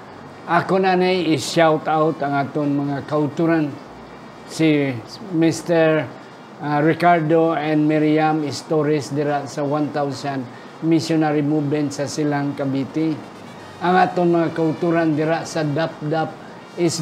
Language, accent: Filipino, native